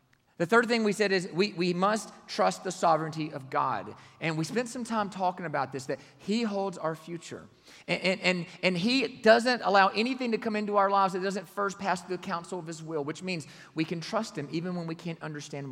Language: English